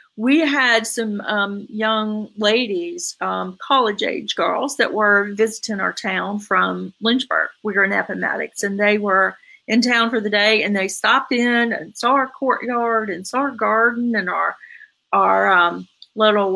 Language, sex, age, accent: English, female, 40-59, American